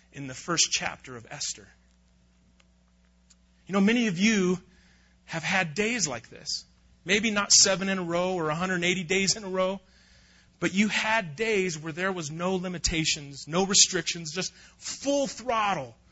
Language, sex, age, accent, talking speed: English, male, 30-49, American, 155 wpm